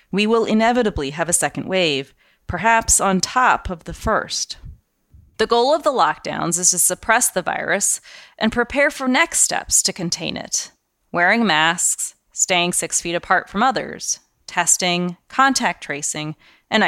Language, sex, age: English, female, 30-49